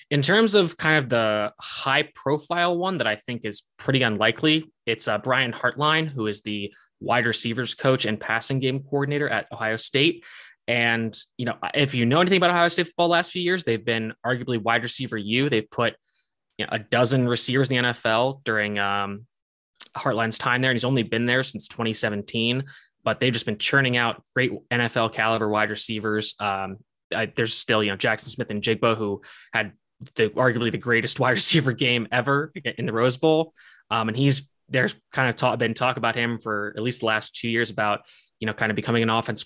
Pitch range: 110-135 Hz